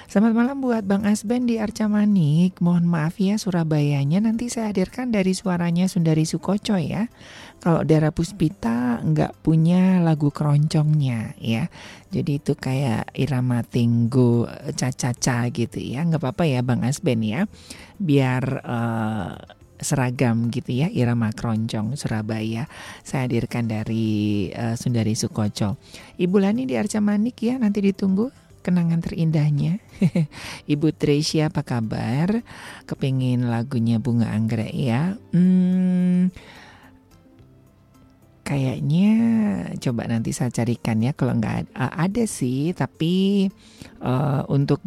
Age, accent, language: 40-59, native, Indonesian